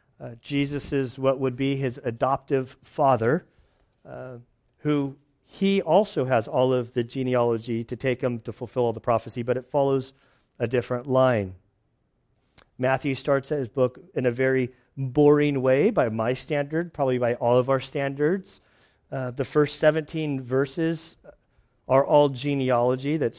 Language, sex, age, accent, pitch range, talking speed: English, male, 40-59, American, 125-145 Hz, 150 wpm